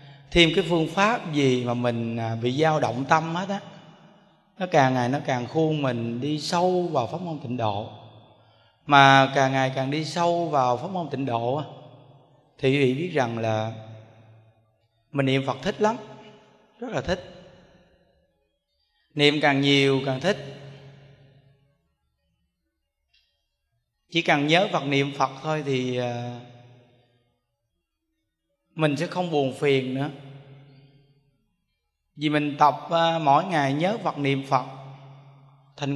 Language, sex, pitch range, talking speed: Vietnamese, male, 130-165 Hz, 135 wpm